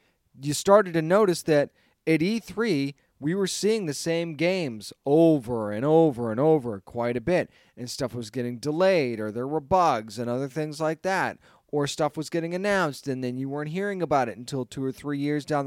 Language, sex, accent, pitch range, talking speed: English, male, American, 140-180 Hz, 205 wpm